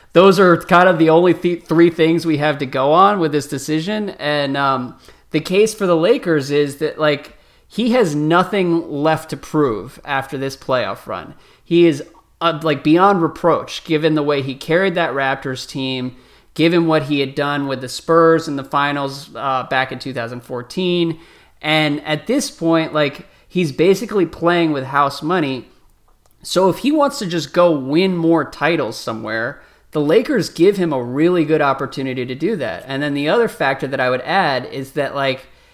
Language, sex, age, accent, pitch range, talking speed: English, male, 30-49, American, 135-165 Hz, 185 wpm